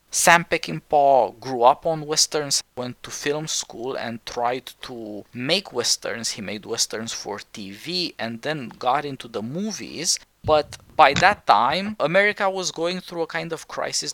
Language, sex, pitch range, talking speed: English, male, 120-155 Hz, 160 wpm